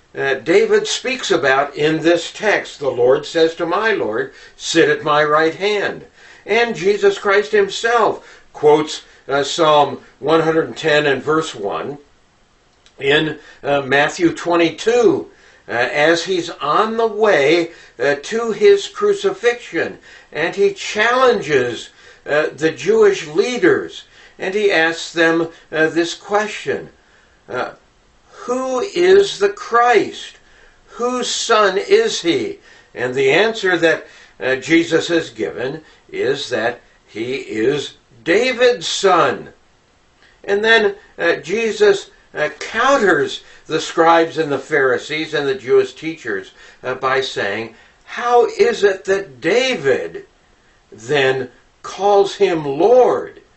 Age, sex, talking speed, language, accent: 60-79, male, 120 wpm, English, American